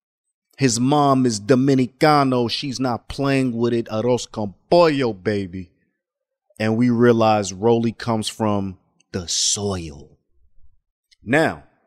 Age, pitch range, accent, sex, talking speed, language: 30-49, 110-175 Hz, American, male, 105 wpm, English